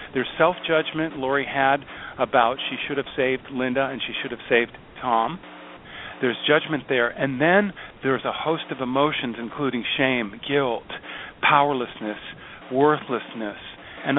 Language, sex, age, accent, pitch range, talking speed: English, male, 50-69, American, 115-150 Hz, 135 wpm